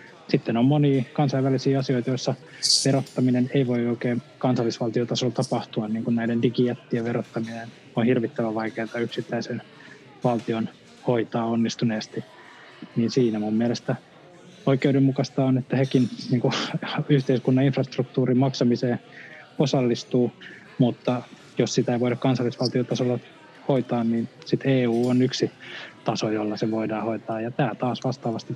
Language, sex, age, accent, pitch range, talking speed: Finnish, male, 20-39, native, 115-135 Hz, 120 wpm